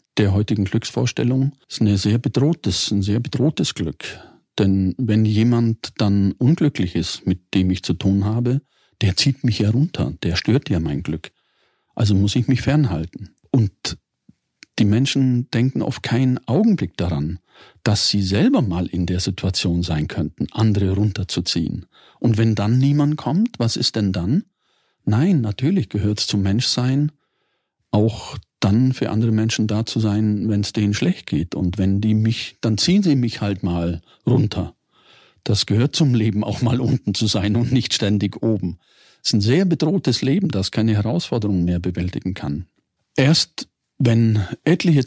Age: 40-59